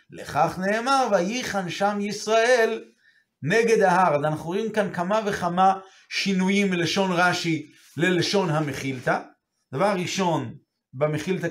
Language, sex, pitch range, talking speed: Hebrew, male, 160-200 Hz, 110 wpm